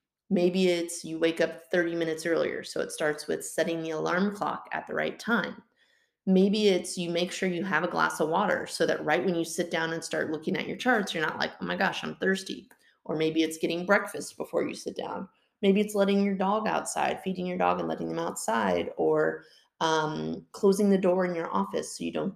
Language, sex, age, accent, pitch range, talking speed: English, female, 30-49, American, 165-195 Hz, 230 wpm